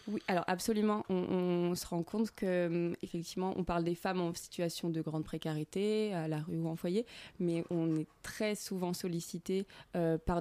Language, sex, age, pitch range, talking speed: French, female, 20-39, 165-190 Hz, 185 wpm